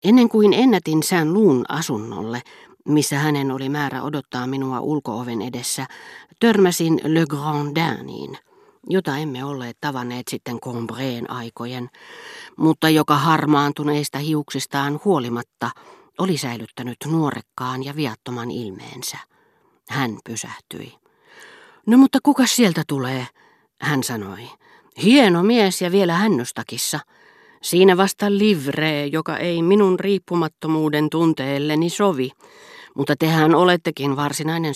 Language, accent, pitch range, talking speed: Finnish, native, 130-175 Hz, 110 wpm